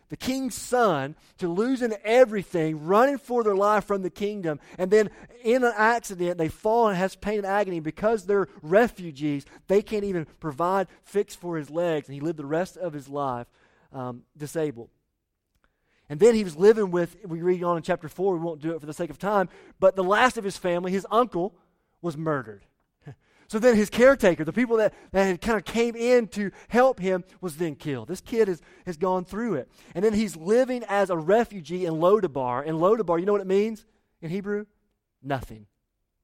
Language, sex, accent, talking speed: English, male, American, 200 wpm